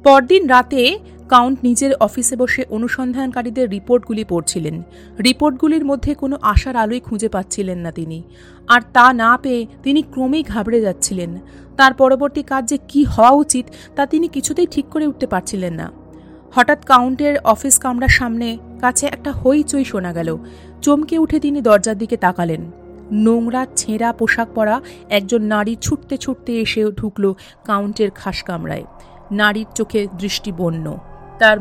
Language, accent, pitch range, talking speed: Bengali, native, 200-275 Hz, 140 wpm